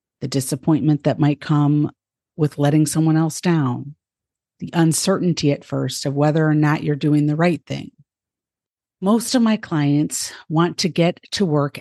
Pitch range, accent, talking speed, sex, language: 140-170 Hz, American, 160 wpm, female, English